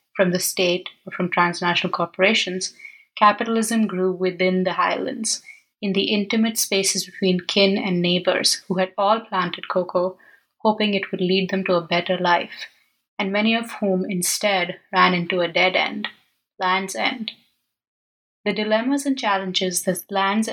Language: English